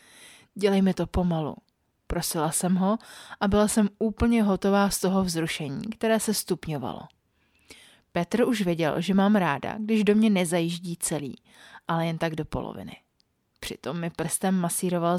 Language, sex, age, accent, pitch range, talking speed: Czech, female, 30-49, native, 165-205 Hz, 150 wpm